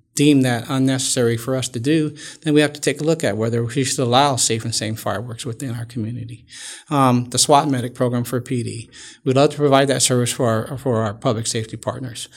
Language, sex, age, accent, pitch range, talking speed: English, male, 50-69, American, 115-135 Hz, 225 wpm